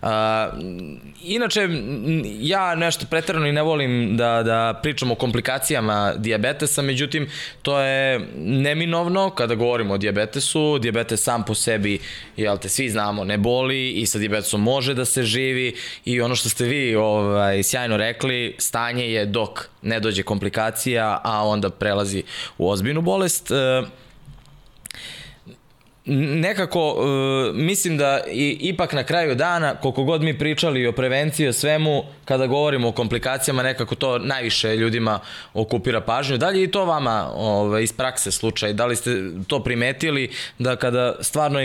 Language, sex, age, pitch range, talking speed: Slovak, male, 20-39, 110-140 Hz, 135 wpm